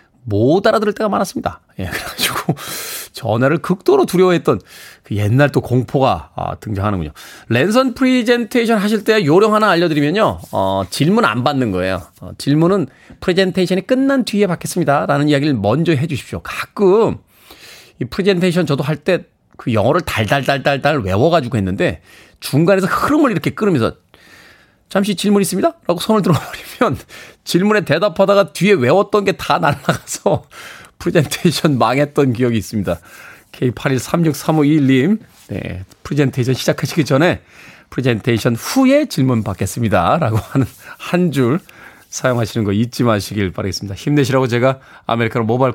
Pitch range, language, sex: 115-180 Hz, Korean, male